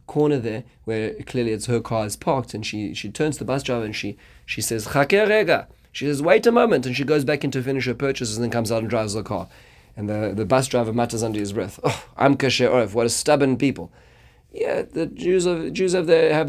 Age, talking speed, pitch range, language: 30-49, 250 wpm, 110-135 Hz, English